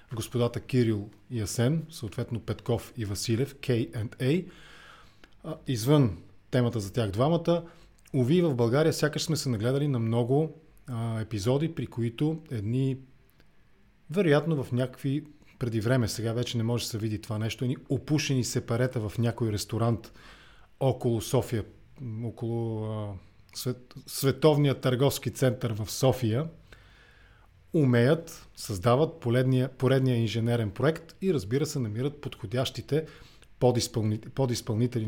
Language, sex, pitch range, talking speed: English, male, 115-140 Hz, 120 wpm